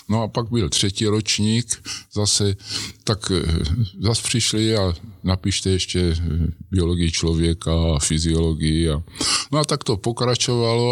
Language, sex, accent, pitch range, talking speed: Czech, male, native, 80-105 Hz, 125 wpm